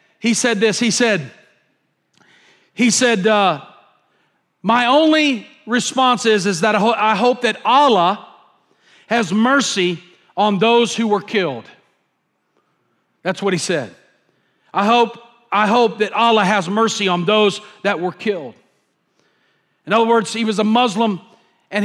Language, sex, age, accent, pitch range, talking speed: English, male, 40-59, American, 210-275 Hz, 145 wpm